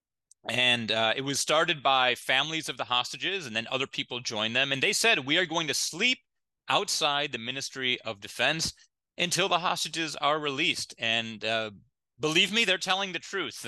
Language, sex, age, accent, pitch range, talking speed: English, male, 30-49, American, 115-155 Hz, 185 wpm